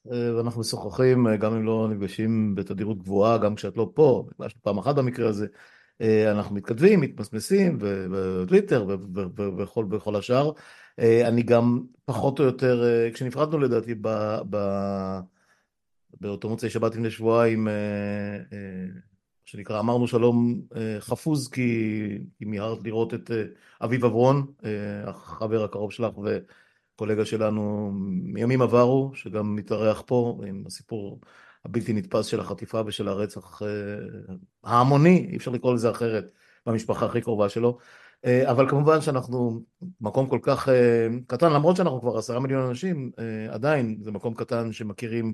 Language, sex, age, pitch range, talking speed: Hebrew, male, 50-69, 105-120 Hz, 130 wpm